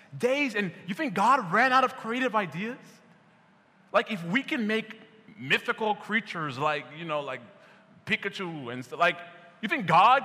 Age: 20-39